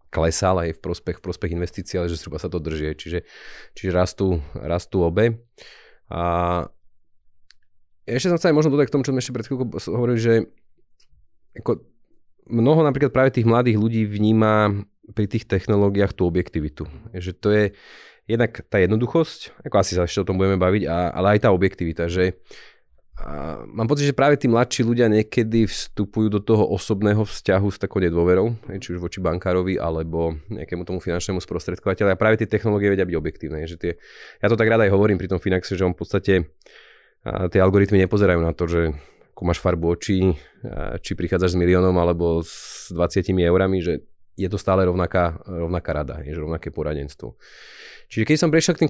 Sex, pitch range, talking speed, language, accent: male, 85-110 Hz, 175 wpm, Czech, Slovak